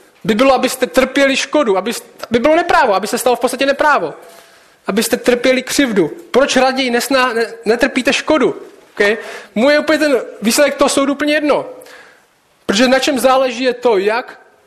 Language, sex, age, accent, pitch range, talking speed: Czech, male, 20-39, native, 190-255 Hz, 165 wpm